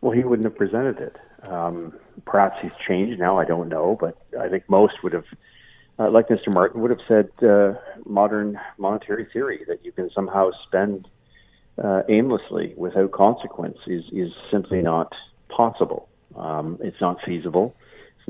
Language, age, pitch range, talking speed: English, 50-69, 90-115 Hz, 165 wpm